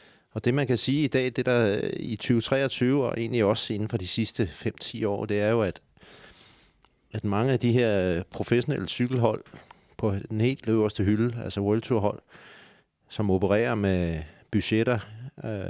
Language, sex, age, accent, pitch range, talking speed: Danish, male, 30-49, native, 100-120 Hz, 165 wpm